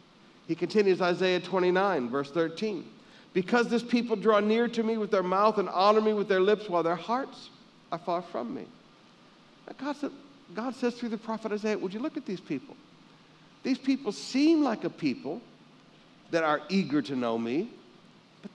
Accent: American